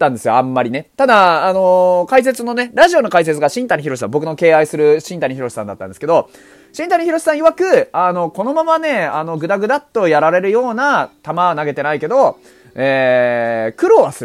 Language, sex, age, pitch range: Japanese, male, 30-49, 150-245 Hz